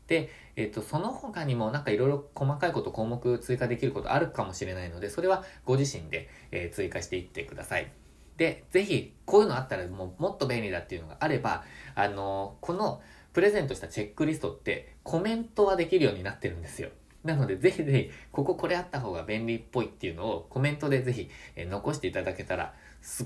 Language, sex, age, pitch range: Japanese, male, 20-39, 95-145 Hz